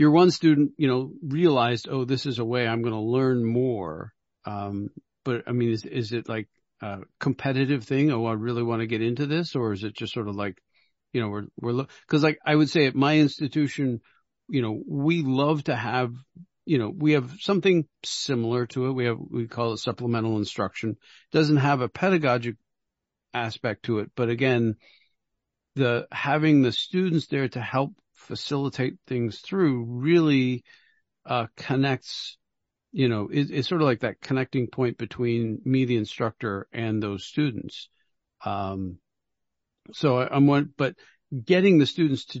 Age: 50-69